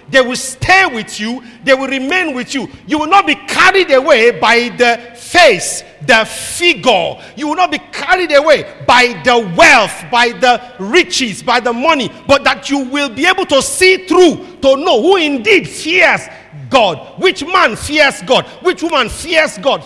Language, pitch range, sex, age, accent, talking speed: English, 250-310 Hz, male, 50-69, Nigerian, 180 wpm